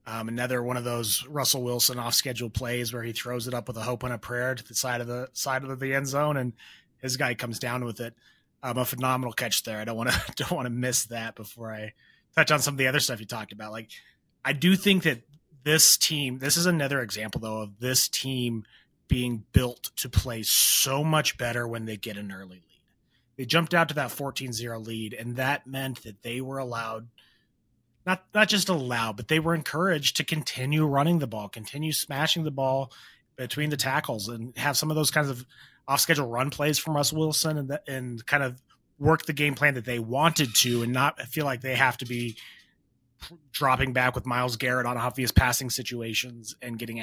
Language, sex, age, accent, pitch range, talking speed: English, male, 30-49, American, 115-140 Hz, 215 wpm